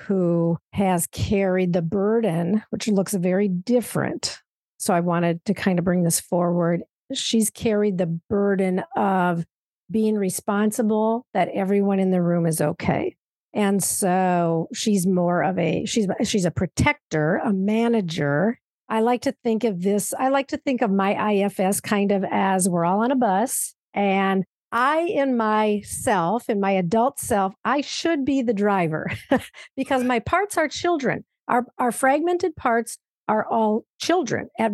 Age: 50-69